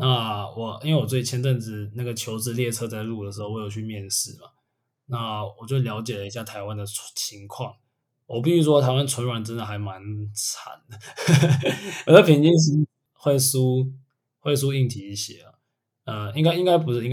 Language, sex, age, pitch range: Chinese, male, 20-39, 110-135 Hz